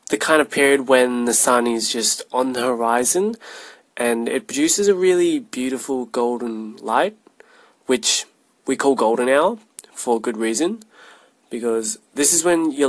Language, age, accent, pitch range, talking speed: English, 20-39, Australian, 115-150 Hz, 155 wpm